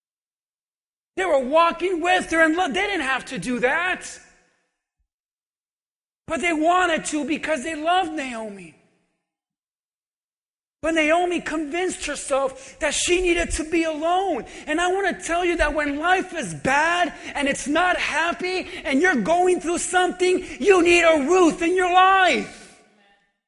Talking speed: 145 wpm